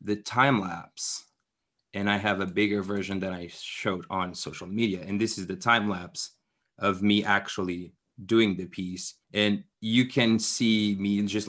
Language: English